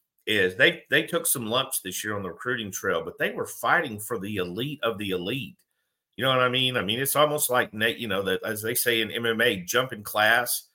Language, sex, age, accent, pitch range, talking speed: English, male, 50-69, American, 105-130 Hz, 240 wpm